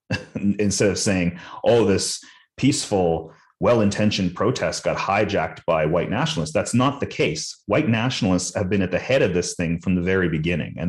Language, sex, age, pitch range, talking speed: English, male, 30-49, 90-105 Hz, 180 wpm